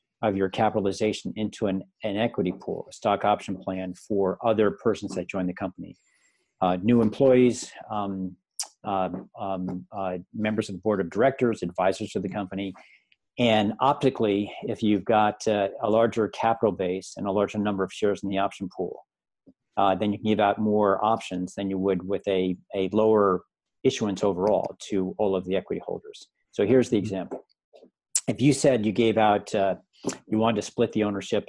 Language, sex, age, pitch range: English, male, 50-69, 95-110 Hz